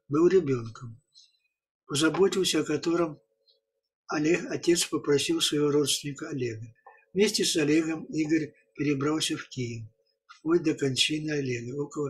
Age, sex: 60-79, male